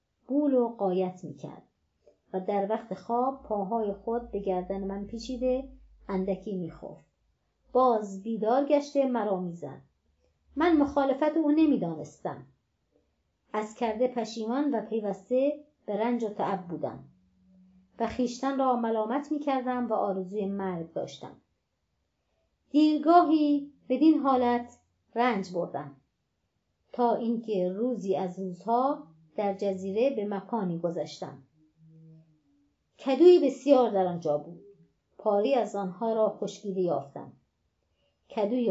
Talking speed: 110 wpm